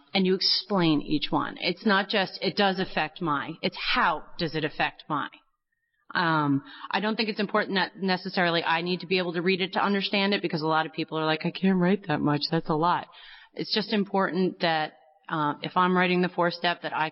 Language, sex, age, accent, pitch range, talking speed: English, female, 30-49, American, 160-190 Hz, 230 wpm